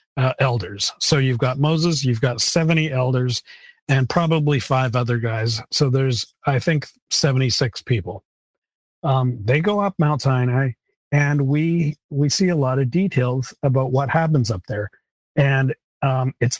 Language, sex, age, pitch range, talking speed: English, male, 40-59, 125-145 Hz, 160 wpm